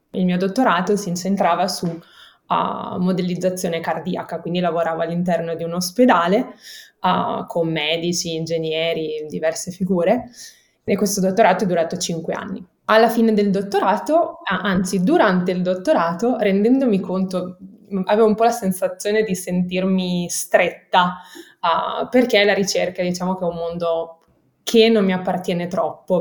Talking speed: 135 wpm